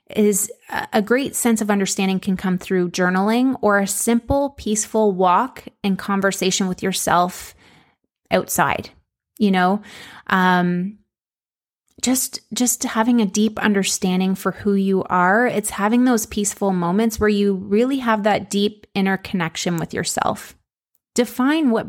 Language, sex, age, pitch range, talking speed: English, female, 20-39, 190-235 Hz, 135 wpm